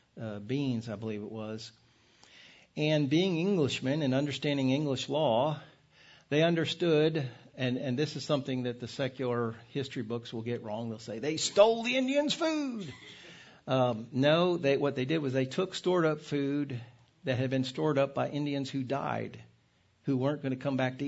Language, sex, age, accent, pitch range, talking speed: English, male, 50-69, American, 125-150 Hz, 175 wpm